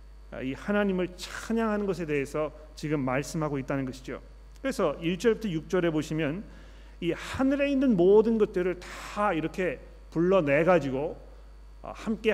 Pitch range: 145-190 Hz